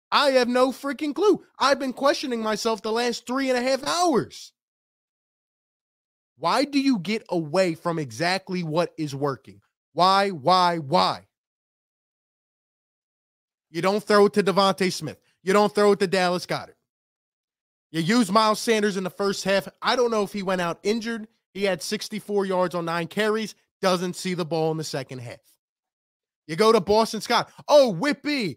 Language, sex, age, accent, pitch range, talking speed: English, male, 20-39, American, 175-230 Hz, 170 wpm